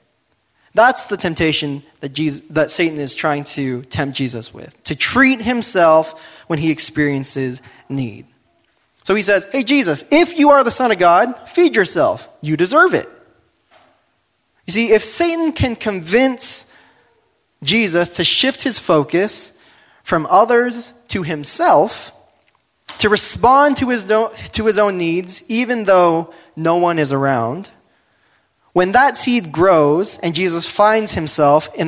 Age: 20-39